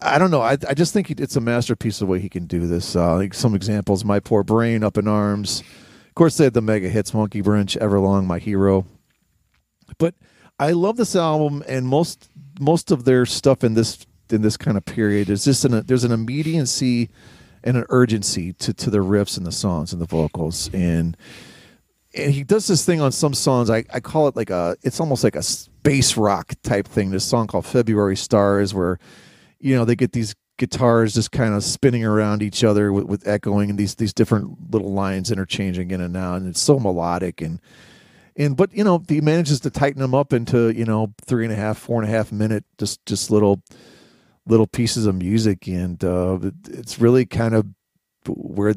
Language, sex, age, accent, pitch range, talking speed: English, male, 40-59, American, 100-125 Hz, 215 wpm